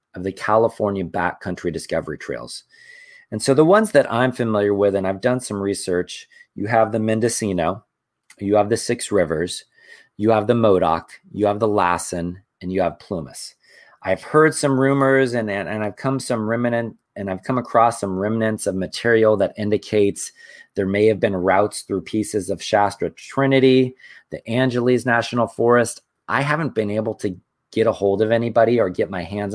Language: English